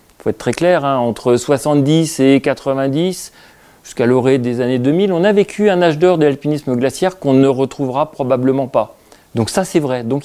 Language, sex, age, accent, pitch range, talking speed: French, male, 40-59, French, 120-165 Hz, 195 wpm